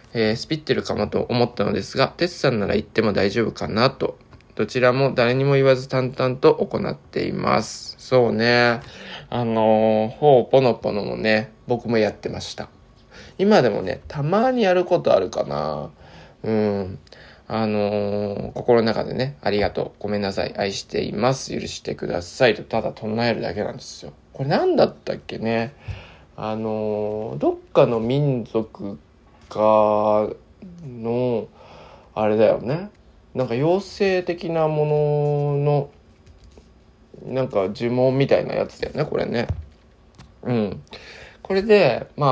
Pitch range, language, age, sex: 105-140 Hz, Japanese, 20-39, male